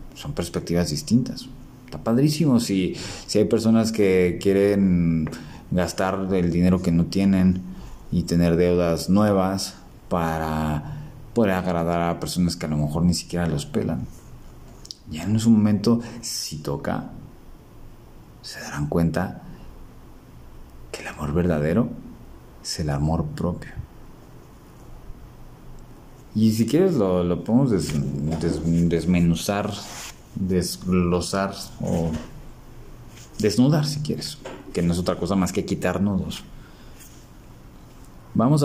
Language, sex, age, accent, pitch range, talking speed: Spanish, male, 30-49, Mexican, 85-110 Hz, 115 wpm